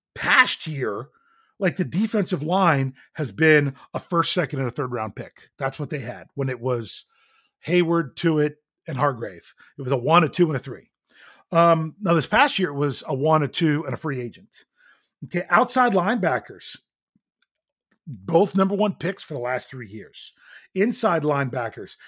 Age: 40-59